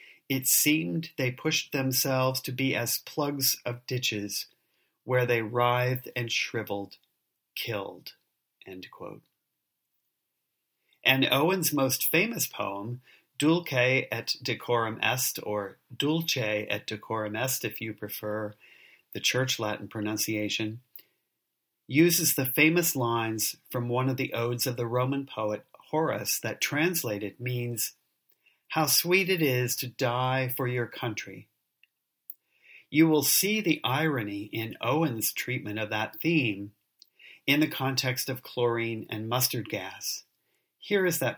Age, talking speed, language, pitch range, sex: 40-59, 125 wpm, English, 115-140 Hz, male